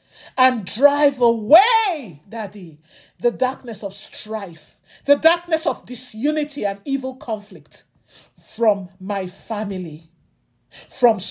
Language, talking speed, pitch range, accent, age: English, 100 wpm, 205-265 Hz, Nigerian, 50-69